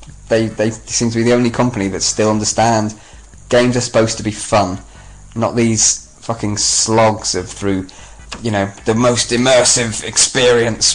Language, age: English, 20-39